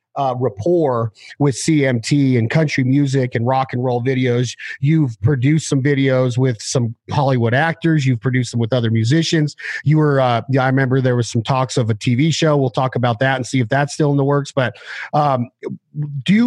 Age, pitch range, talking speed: 40-59, 135-165 Hz, 200 wpm